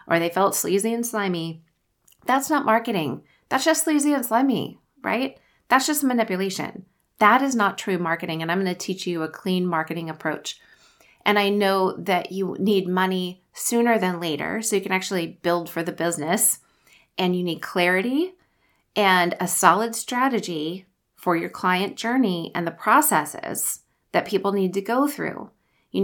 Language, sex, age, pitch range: English, female, 30-49, 180-230 Hz